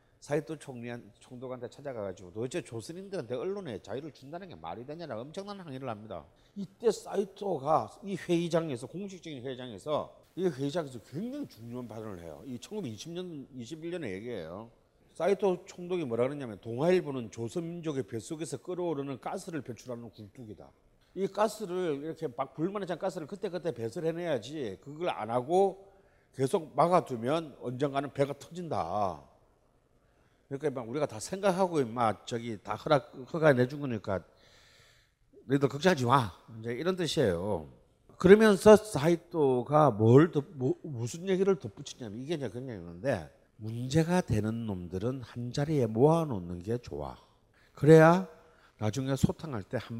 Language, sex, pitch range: Korean, male, 120-170 Hz